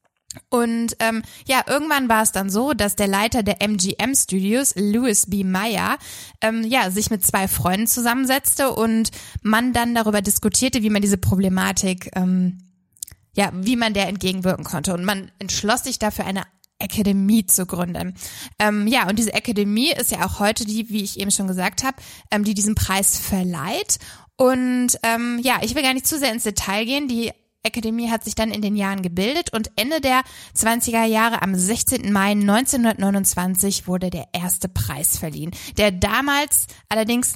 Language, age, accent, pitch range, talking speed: German, 20-39, German, 195-235 Hz, 170 wpm